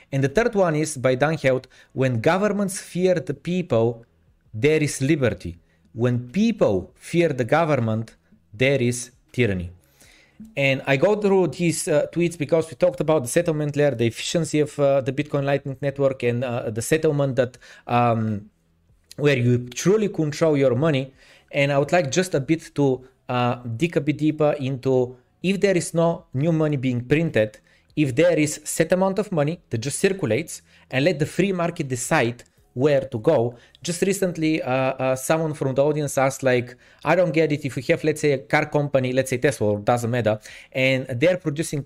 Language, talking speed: Bulgarian, 185 wpm